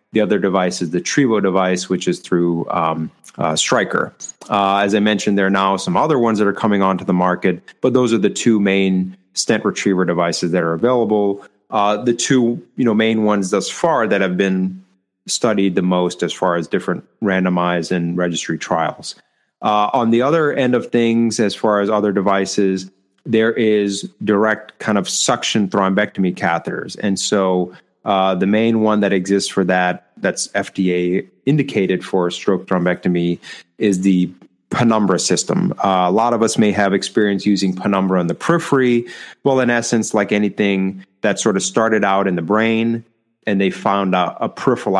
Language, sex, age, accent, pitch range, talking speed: English, male, 30-49, American, 95-110 Hz, 185 wpm